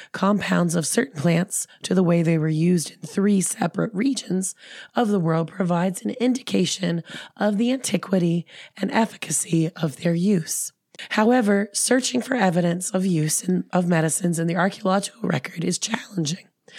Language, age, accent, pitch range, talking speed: English, 20-39, American, 170-215 Hz, 150 wpm